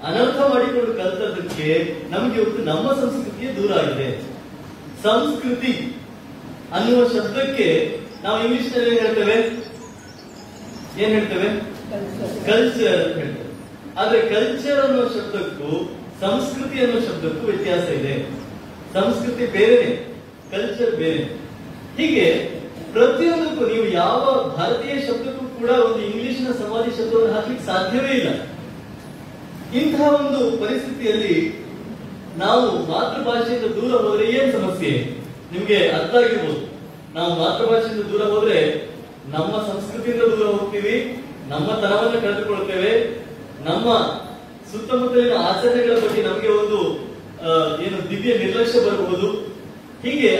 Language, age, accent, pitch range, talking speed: Kannada, 30-49, native, 205-250 Hz, 95 wpm